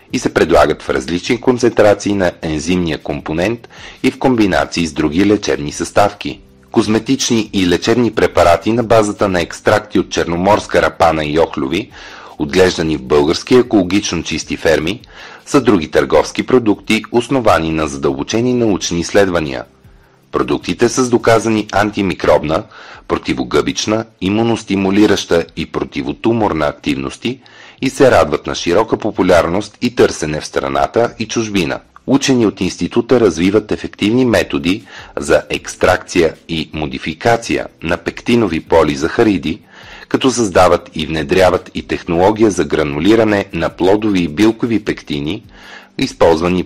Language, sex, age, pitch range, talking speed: Bulgarian, male, 40-59, 85-115 Hz, 120 wpm